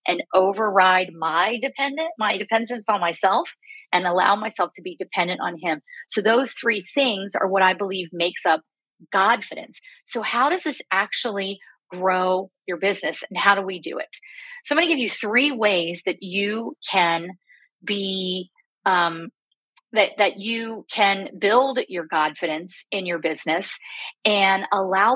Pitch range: 185-250 Hz